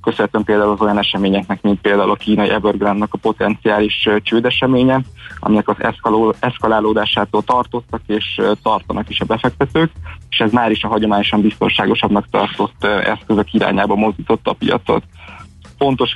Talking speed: 135 wpm